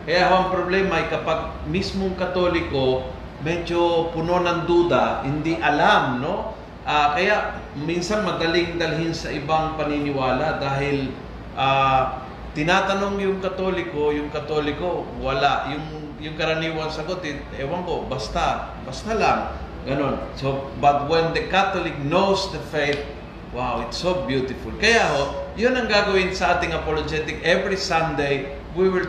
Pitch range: 145-185 Hz